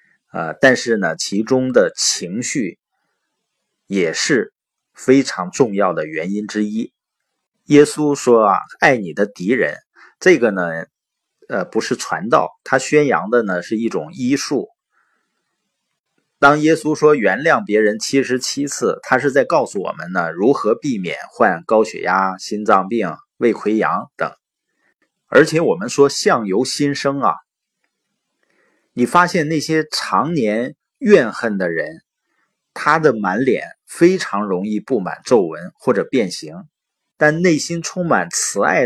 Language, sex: Chinese, male